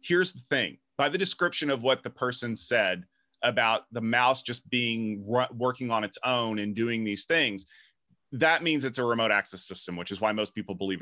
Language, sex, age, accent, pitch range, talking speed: English, male, 30-49, American, 105-135 Hz, 200 wpm